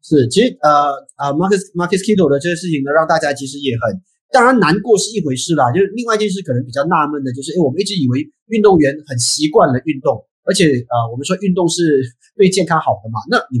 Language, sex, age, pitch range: Chinese, male, 30-49, 130-195 Hz